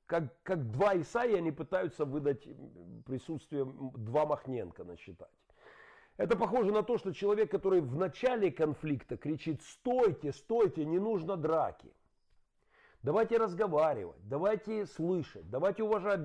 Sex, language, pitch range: male, Russian, 125-190 Hz